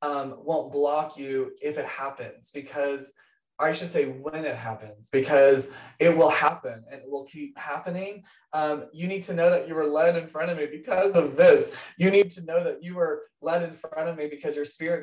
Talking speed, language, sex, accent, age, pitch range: 215 wpm, English, male, American, 20-39, 140-175 Hz